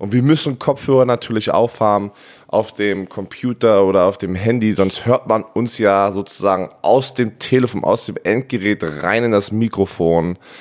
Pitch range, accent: 90-115 Hz, German